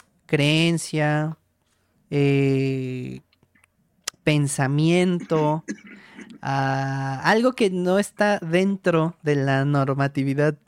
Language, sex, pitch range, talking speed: Spanish, male, 135-190 Hz, 60 wpm